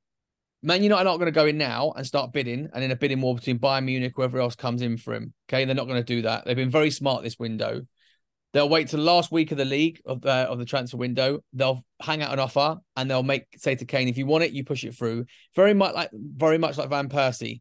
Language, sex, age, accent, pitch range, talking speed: English, male, 30-49, British, 125-150 Hz, 275 wpm